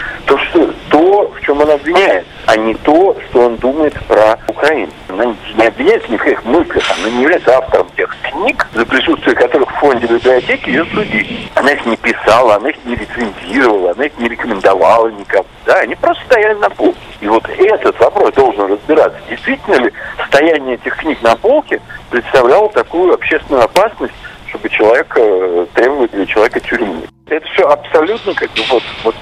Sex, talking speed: male, 175 wpm